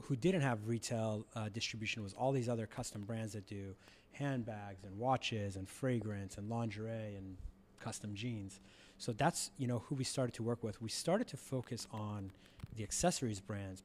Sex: male